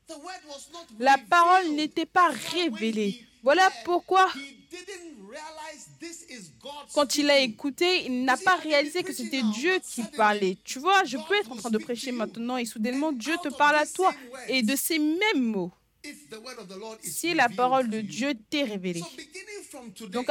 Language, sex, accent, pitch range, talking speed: French, female, French, 215-300 Hz, 150 wpm